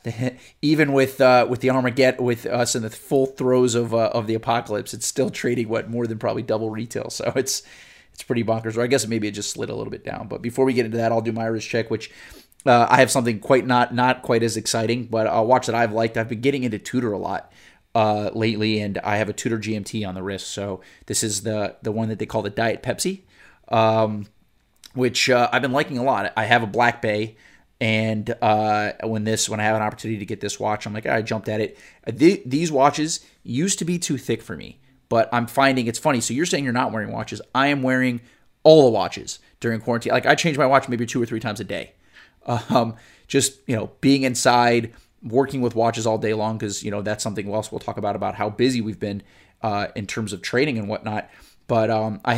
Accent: American